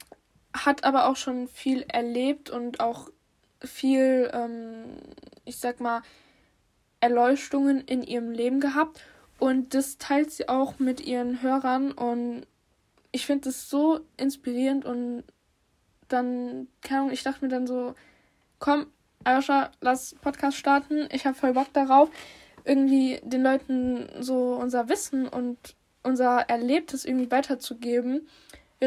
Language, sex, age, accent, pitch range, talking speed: German, female, 10-29, German, 250-280 Hz, 125 wpm